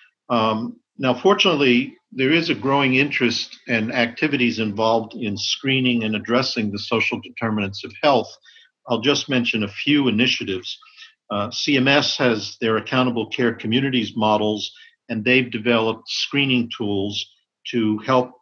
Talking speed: 135 wpm